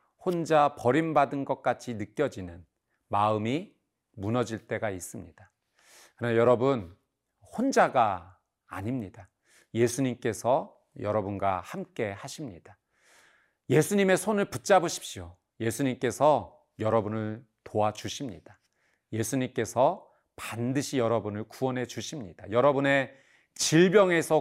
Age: 40-59